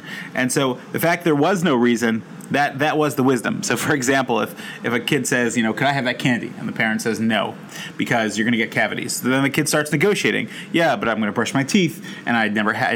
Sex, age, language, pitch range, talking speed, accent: male, 30-49, English, 120-160 Hz, 255 wpm, American